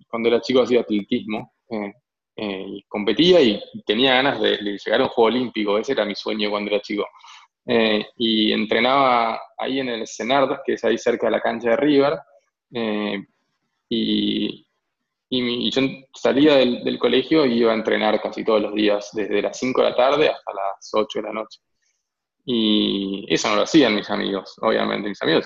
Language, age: Spanish, 20-39